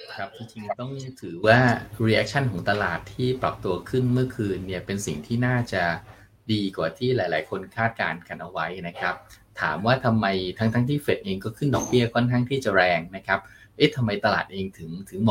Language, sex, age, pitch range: Thai, male, 20-39, 105-130 Hz